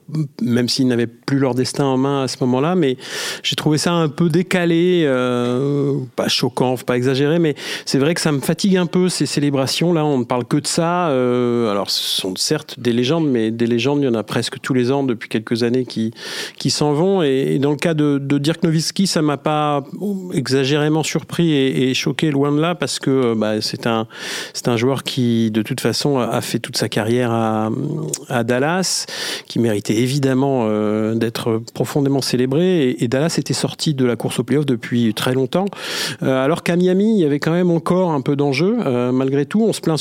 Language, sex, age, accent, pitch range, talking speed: French, male, 40-59, French, 120-155 Hz, 220 wpm